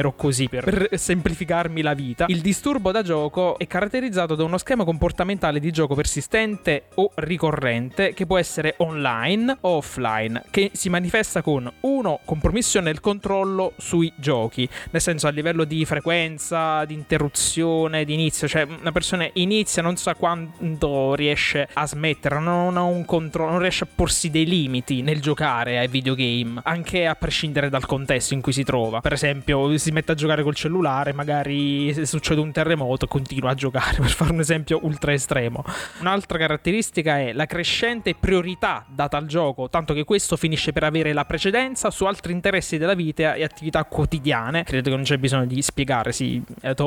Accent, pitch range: native, 145-180 Hz